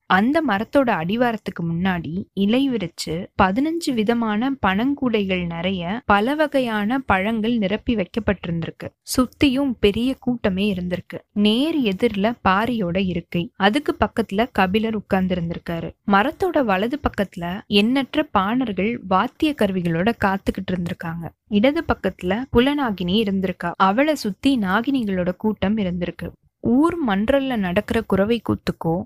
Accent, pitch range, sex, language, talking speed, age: native, 190-245 Hz, female, Tamil, 100 wpm, 20-39